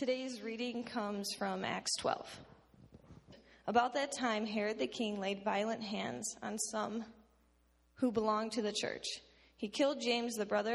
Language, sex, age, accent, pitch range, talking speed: English, female, 20-39, American, 205-240 Hz, 155 wpm